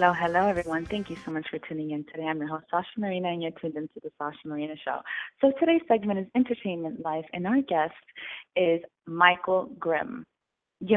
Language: English